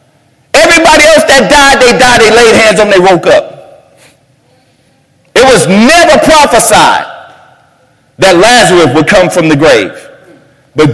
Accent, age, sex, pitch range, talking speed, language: American, 50-69, male, 135-205 Hz, 145 wpm, English